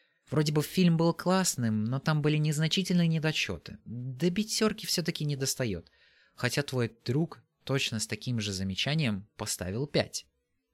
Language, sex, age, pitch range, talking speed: Russian, male, 20-39, 105-150 Hz, 140 wpm